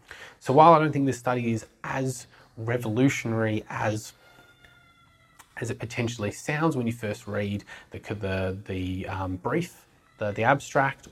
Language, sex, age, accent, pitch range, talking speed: English, male, 20-39, Australian, 110-135 Hz, 145 wpm